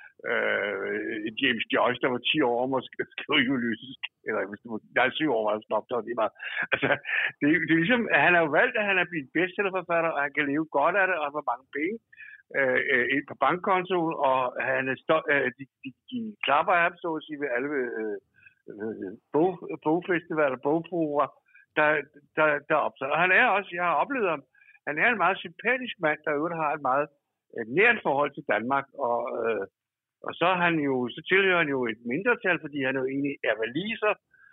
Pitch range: 135-210 Hz